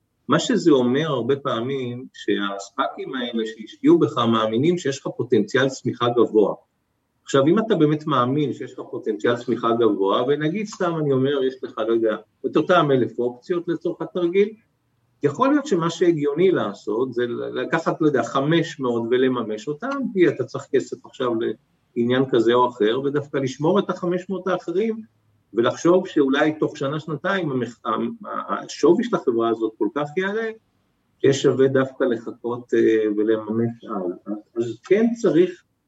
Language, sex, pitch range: Hebrew, male, 120-175 Hz